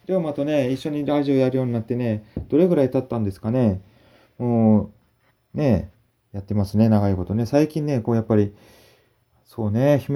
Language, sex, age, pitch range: Japanese, male, 20-39, 105-130 Hz